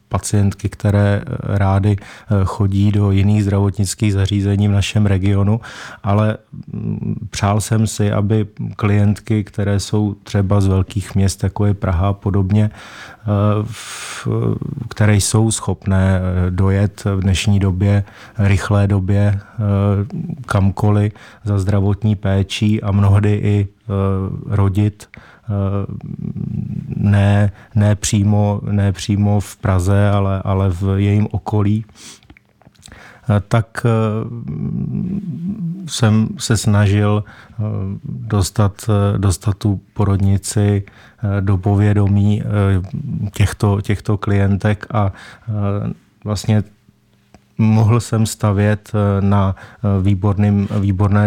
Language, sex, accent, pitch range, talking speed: Czech, male, native, 100-105 Hz, 90 wpm